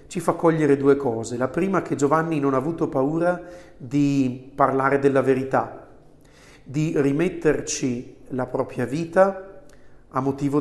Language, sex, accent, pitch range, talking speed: Italian, male, native, 130-155 Hz, 140 wpm